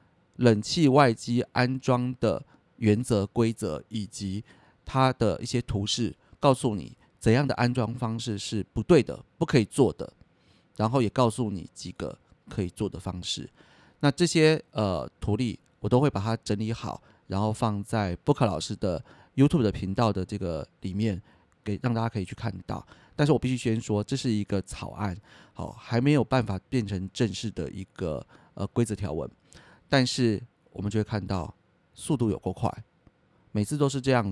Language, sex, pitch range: Chinese, male, 100-125 Hz